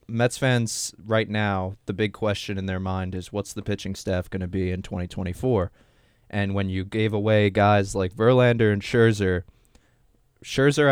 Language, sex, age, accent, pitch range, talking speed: English, male, 20-39, American, 95-115 Hz, 170 wpm